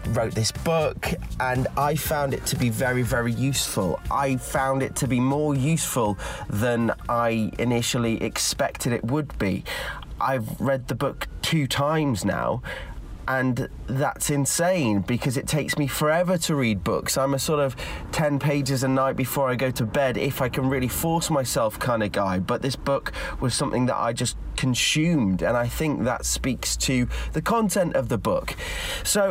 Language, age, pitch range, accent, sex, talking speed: English, 30-49, 110-145 Hz, British, male, 180 wpm